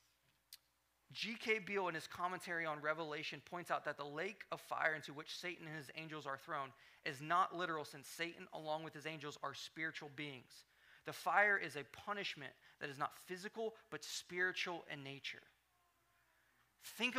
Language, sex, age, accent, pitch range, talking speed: English, male, 20-39, American, 150-205 Hz, 170 wpm